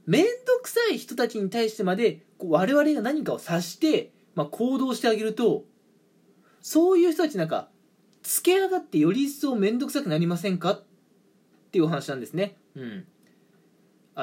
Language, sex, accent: Japanese, male, native